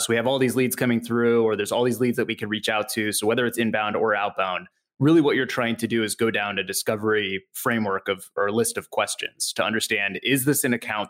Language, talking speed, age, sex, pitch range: English, 265 wpm, 20-39, male, 110-130 Hz